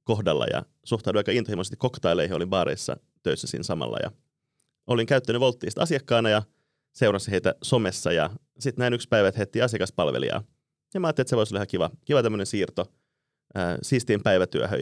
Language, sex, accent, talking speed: Finnish, male, native, 160 wpm